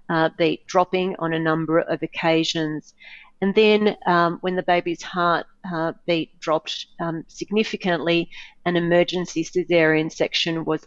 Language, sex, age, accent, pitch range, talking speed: English, female, 40-59, Australian, 165-195 Hz, 140 wpm